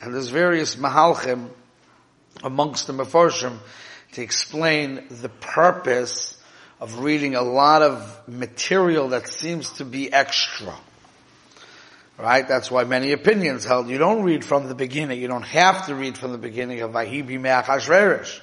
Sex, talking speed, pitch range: male, 145 wpm, 125-155 Hz